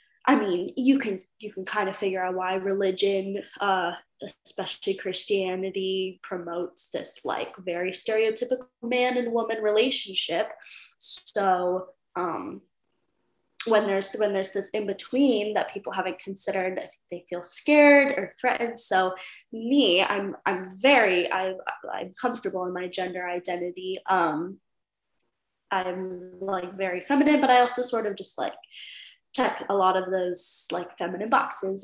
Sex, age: female, 10-29